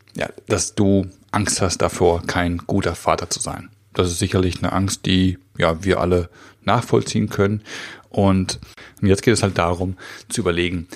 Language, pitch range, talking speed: German, 90-105 Hz, 165 wpm